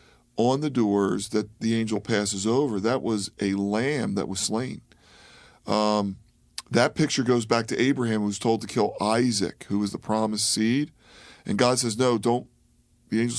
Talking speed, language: 180 wpm, English